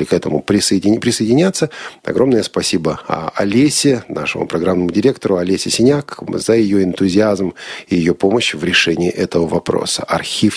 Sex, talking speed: male, 125 wpm